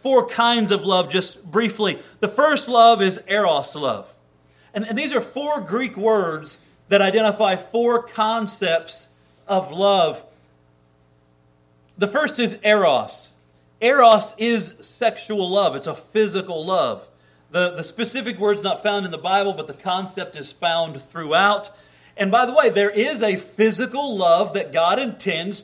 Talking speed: 150 wpm